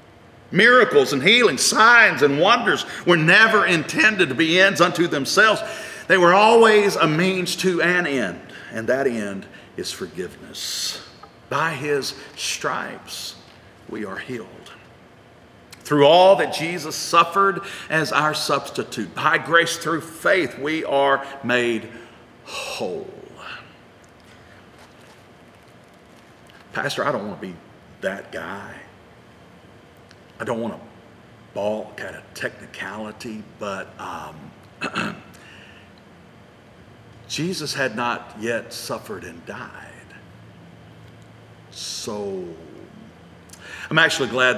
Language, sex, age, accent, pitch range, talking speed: English, male, 50-69, American, 120-175 Hz, 105 wpm